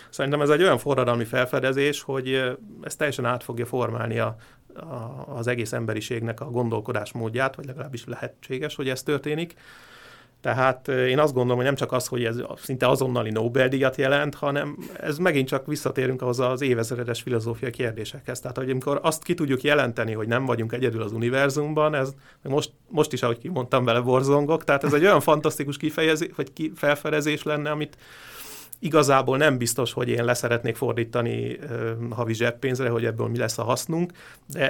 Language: Hungarian